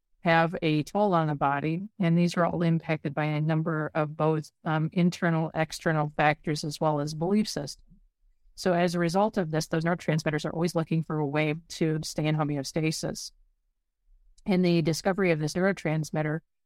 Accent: American